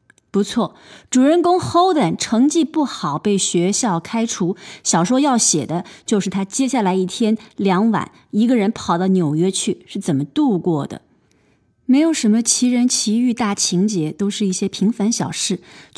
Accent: native